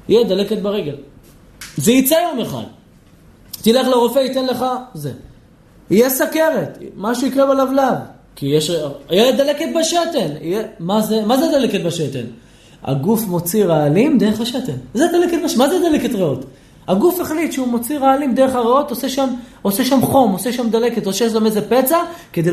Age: 20-39